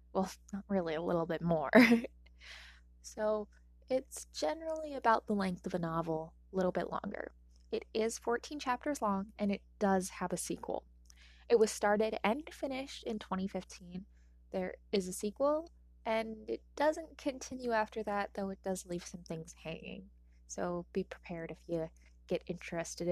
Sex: female